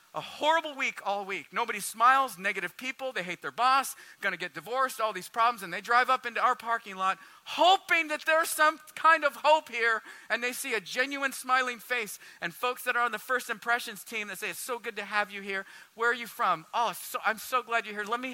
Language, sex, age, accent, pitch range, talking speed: English, male, 40-59, American, 205-285 Hz, 240 wpm